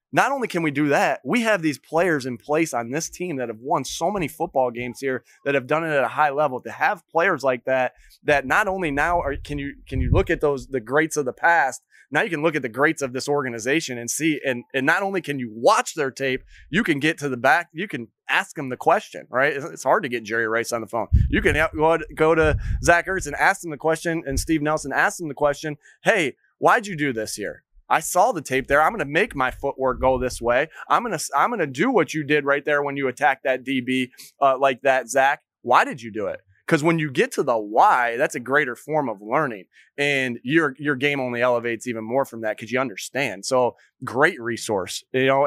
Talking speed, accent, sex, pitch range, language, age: 250 wpm, American, male, 130-160 Hz, English, 20-39